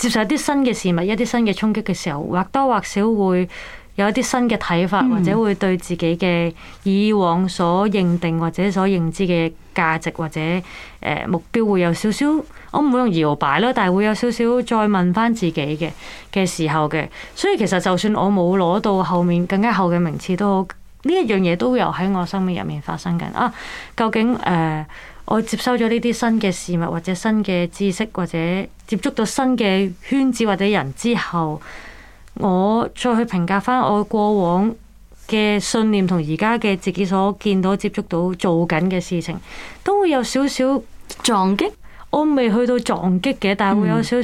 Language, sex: Chinese, female